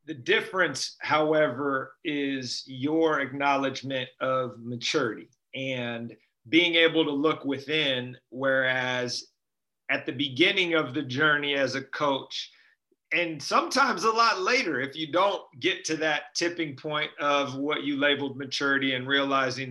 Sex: male